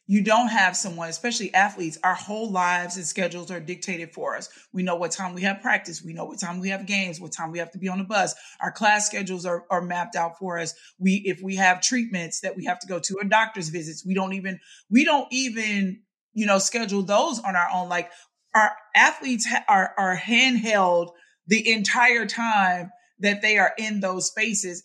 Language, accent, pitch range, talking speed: English, American, 185-215 Hz, 215 wpm